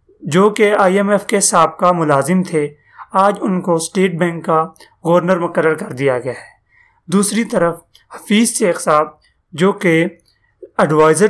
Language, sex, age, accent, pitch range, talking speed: English, male, 30-49, Indian, 155-200 Hz, 155 wpm